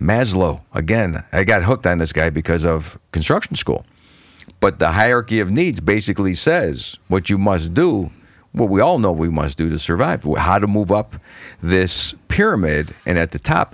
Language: English